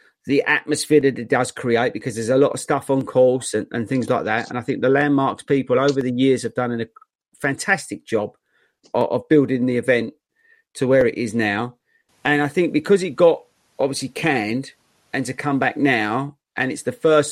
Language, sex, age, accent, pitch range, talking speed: English, male, 30-49, British, 125-150 Hz, 210 wpm